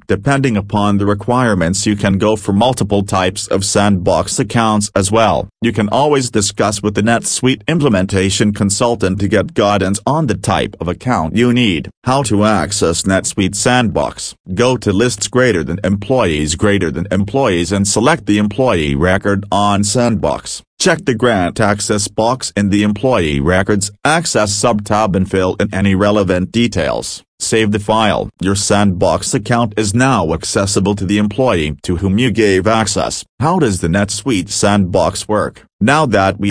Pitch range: 95-115 Hz